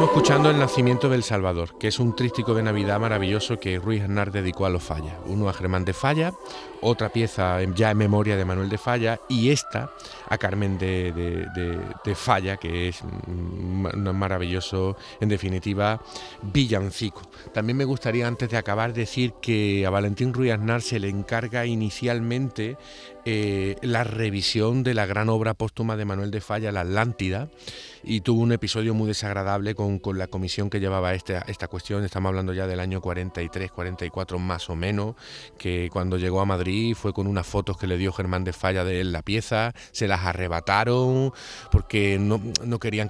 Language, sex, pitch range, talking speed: Spanish, male, 95-115 Hz, 180 wpm